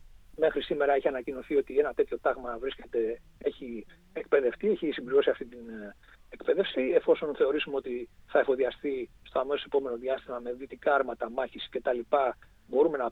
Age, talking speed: 40-59, 145 wpm